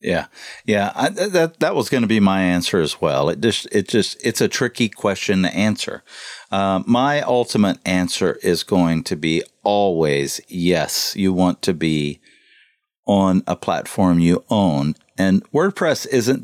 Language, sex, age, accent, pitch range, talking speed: English, male, 50-69, American, 85-100 Hz, 170 wpm